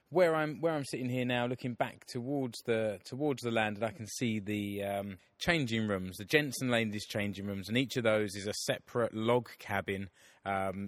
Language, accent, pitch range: English, British, 100-125 Hz